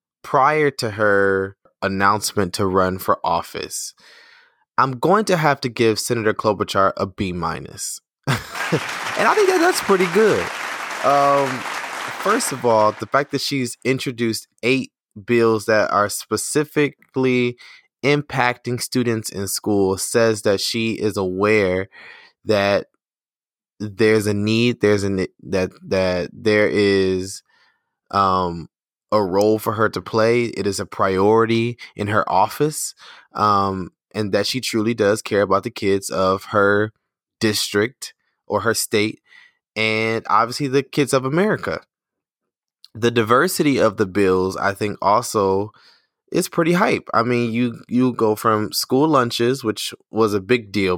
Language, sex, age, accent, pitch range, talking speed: English, male, 20-39, American, 100-130 Hz, 140 wpm